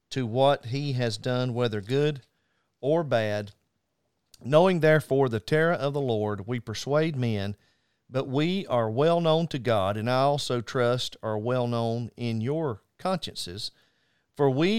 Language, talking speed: English, 155 wpm